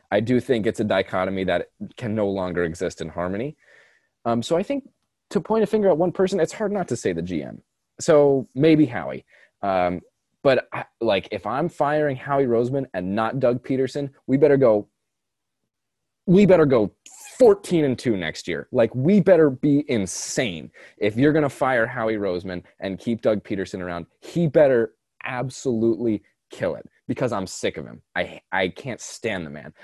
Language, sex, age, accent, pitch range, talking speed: English, male, 20-39, American, 100-155 Hz, 185 wpm